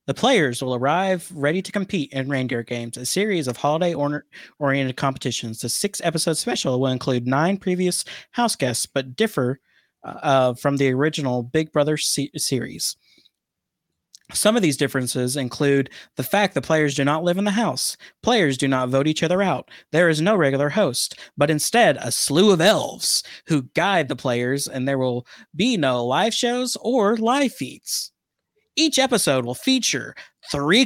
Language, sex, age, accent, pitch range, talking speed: English, male, 30-49, American, 135-225 Hz, 165 wpm